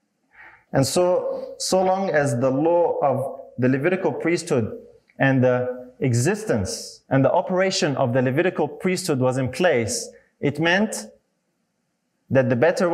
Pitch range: 140-215 Hz